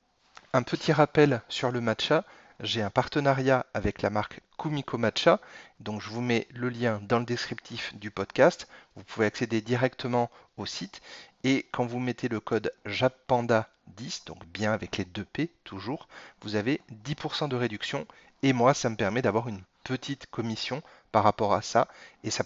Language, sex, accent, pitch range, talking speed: French, male, French, 110-130 Hz, 175 wpm